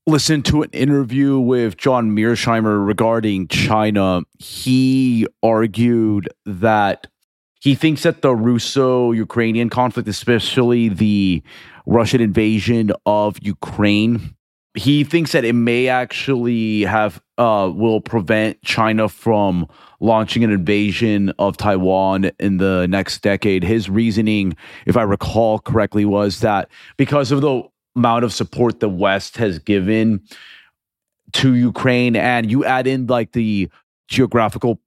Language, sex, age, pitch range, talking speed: English, male, 30-49, 100-120 Hz, 125 wpm